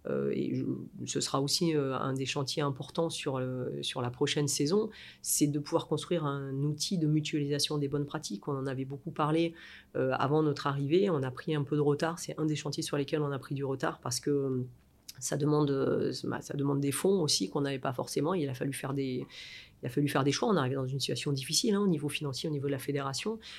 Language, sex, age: French, female, 30-49